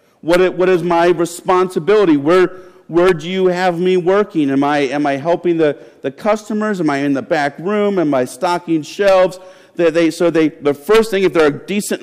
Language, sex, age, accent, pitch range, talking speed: English, male, 50-69, American, 150-200 Hz, 180 wpm